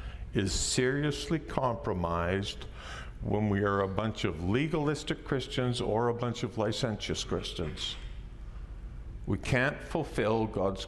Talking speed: 115 wpm